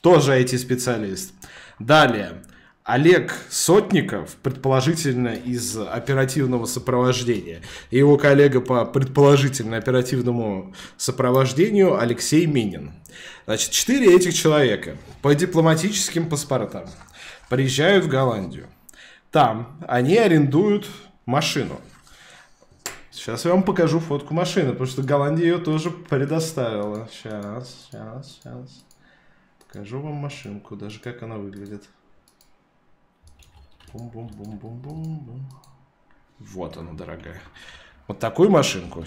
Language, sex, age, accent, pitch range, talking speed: Russian, male, 20-39, native, 110-145 Hz, 90 wpm